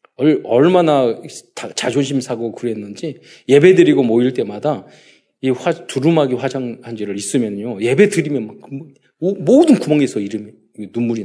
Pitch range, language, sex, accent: 110-170 Hz, Korean, male, native